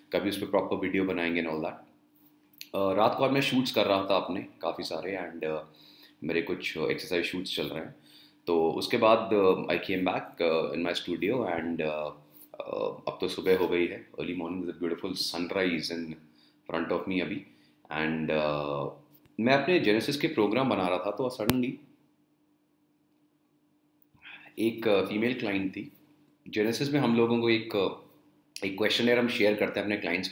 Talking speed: 170 wpm